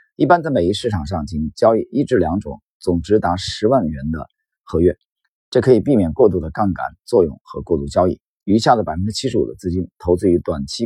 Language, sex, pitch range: Chinese, male, 80-105 Hz